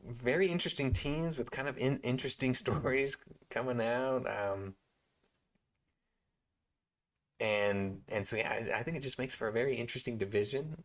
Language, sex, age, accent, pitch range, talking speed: English, male, 30-49, American, 100-130 Hz, 150 wpm